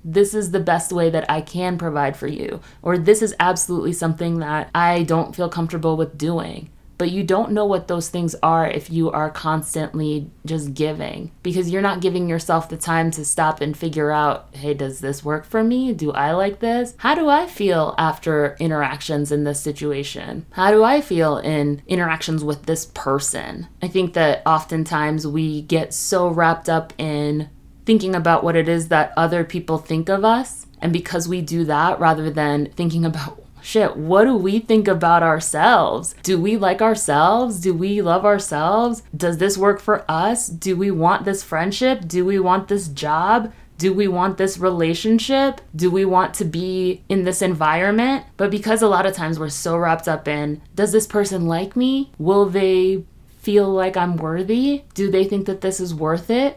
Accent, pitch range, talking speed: American, 155-195 Hz, 190 wpm